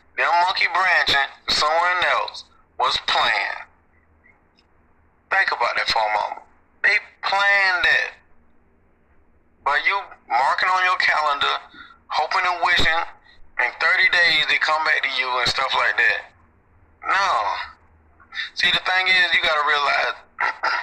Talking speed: 135 wpm